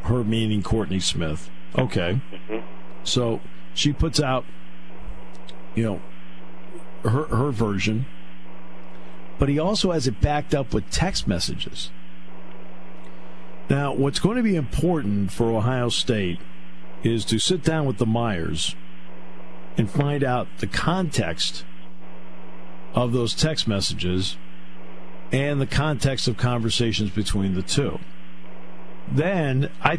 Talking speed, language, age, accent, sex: 120 wpm, English, 50-69, American, male